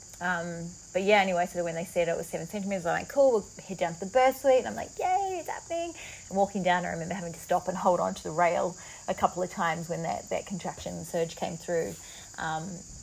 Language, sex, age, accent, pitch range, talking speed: English, female, 30-49, Australian, 170-205 Hz, 250 wpm